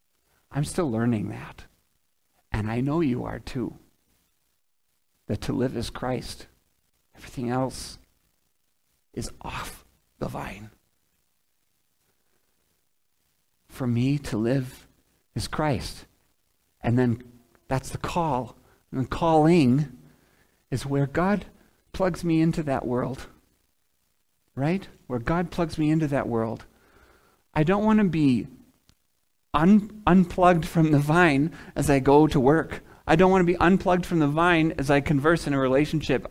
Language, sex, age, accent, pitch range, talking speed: English, male, 50-69, American, 135-180 Hz, 135 wpm